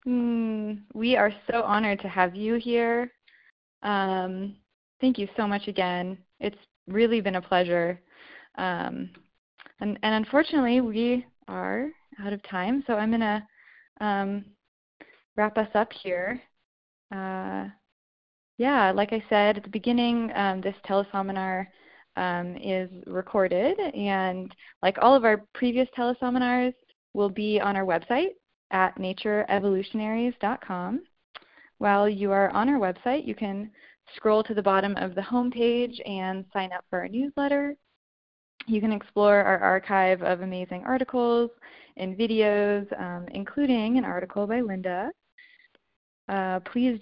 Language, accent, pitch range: English, American, 190-245 Hz